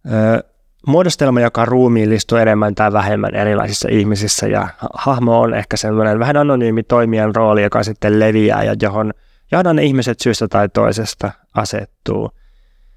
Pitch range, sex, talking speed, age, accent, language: 110-125 Hz, male, 130 wpm, 20-39, native, Finnish